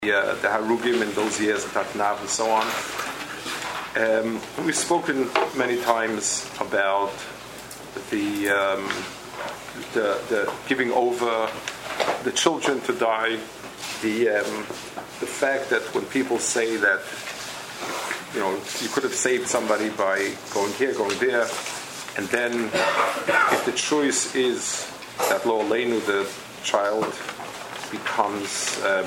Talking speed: 125 wpm